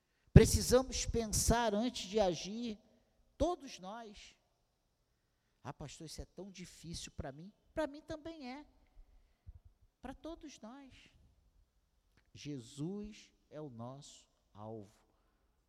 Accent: Brazilian